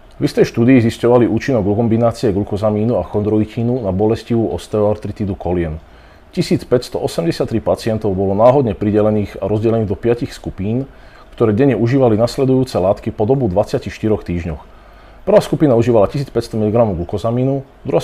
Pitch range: 95-125 Hz